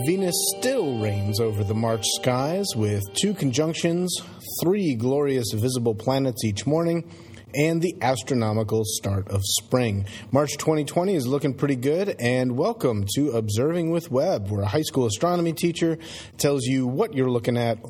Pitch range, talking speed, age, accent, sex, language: 110-150 Hz, 155 wpm, 30-49, American, male, English